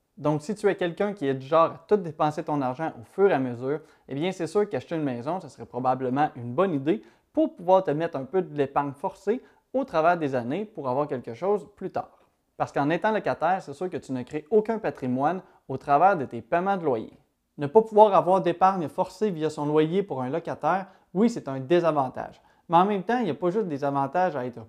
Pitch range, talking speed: 140-190 Hz, 240 wpm